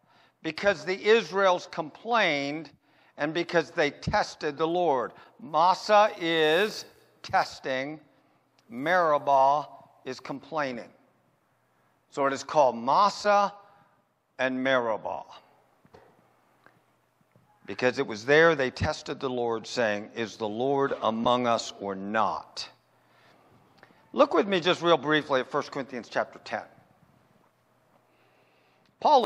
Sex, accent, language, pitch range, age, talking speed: male, American, English, 145-205 Hz, 50-69, 105 wpm